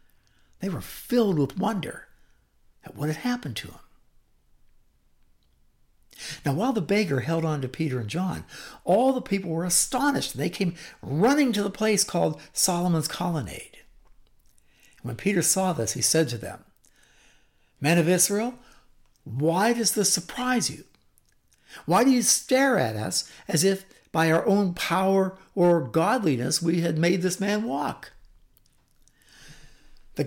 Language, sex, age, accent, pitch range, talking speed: English, male, 60-79, American, 160-215 Hz, 145 wpm